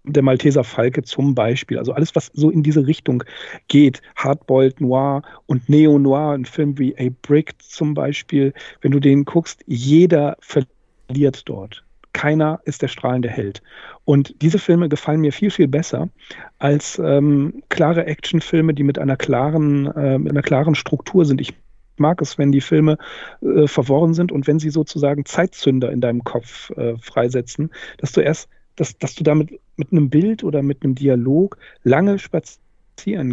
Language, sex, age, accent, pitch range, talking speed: German, male, 40-59, German, 135-160 Hz, 160 wpm